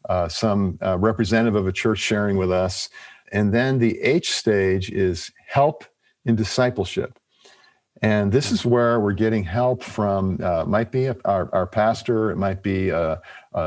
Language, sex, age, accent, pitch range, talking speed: English, male, 50-69, American, 100-120 Hz, 170 wpm